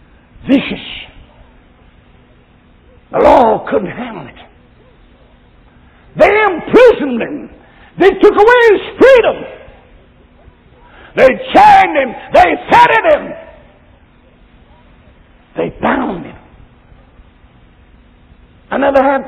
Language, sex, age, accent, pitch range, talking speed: English, male, 60-79, American, 200-330 Hz, 80 wpm